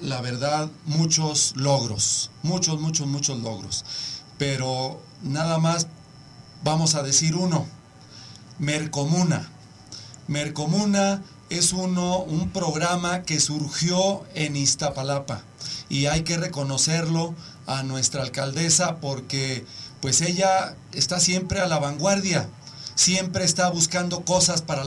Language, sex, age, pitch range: Spanish, male, 40-59, 140-175 Hz